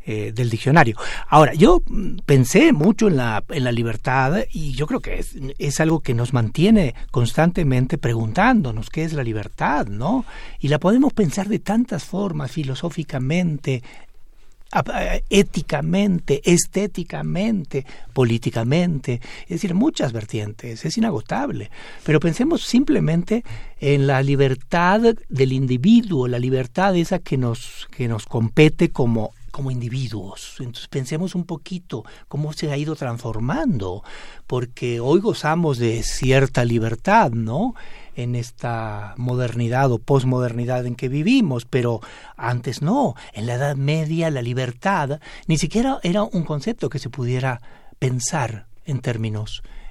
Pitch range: 120-175 Hz